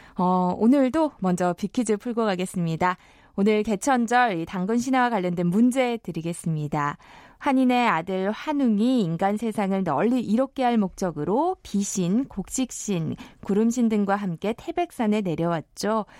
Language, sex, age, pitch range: Korean, female, 20-39, 180-245 Hz